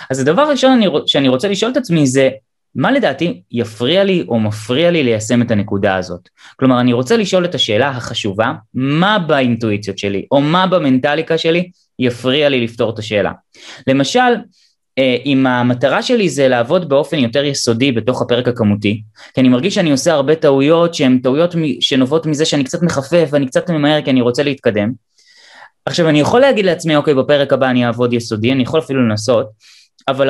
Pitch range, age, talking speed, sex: 125-180 Hz, 20-39, 155 wpm, male